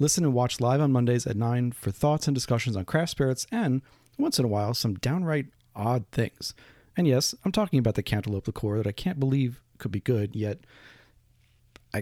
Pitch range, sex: 110-140 Hz, male